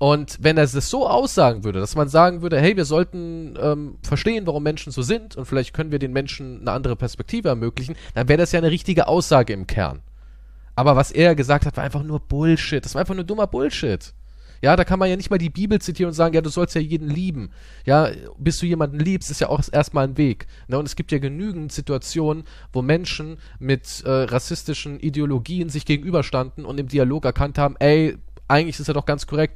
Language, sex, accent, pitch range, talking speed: German, male, German, 120-155 Hz, 220 wpm